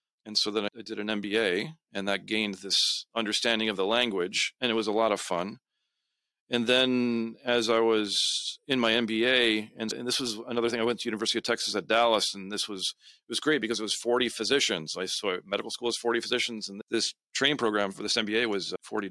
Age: 40-59